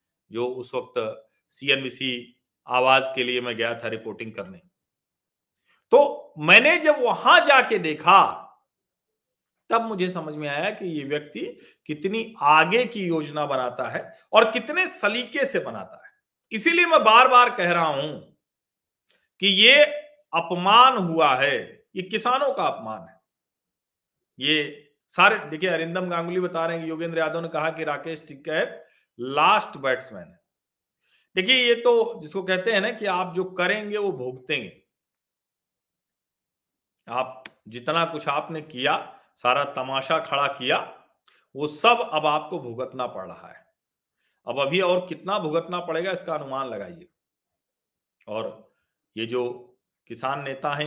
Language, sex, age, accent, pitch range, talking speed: Hindi, male, 40-59, native, 135-195 Hz, 140 wpm